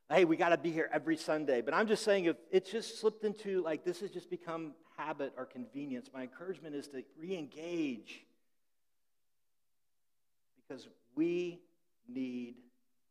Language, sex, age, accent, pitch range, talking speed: English, male, 50-69, American, 175-235 Hz, 150 wpm